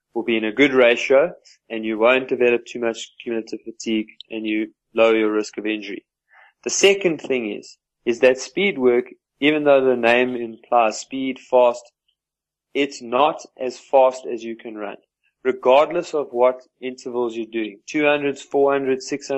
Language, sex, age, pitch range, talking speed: English, male, 20-39, 120-140 Hz, 165 wpm